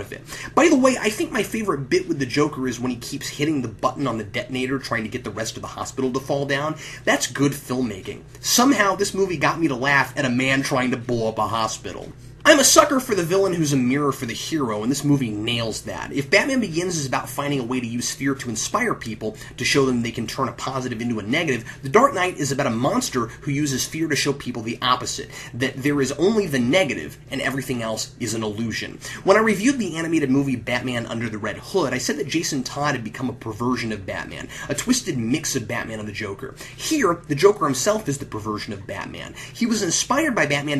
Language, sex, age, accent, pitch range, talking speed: English, male, 30-49, American, 120-155 Hz, 245 wpm